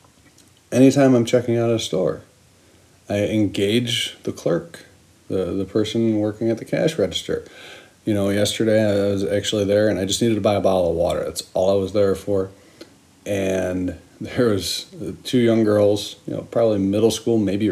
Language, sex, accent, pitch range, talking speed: English, male, American, 95-110 Hz, 180 wpm